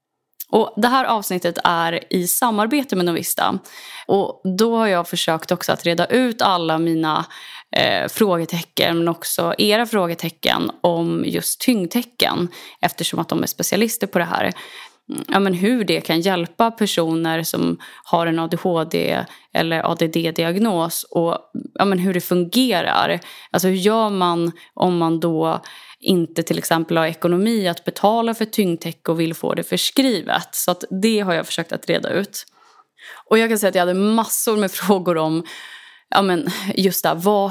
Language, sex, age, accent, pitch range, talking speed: English, female, 20-39, Swedish, 170-210 Hz, 165 wpm